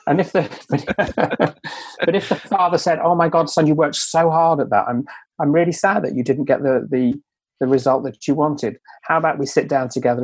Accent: British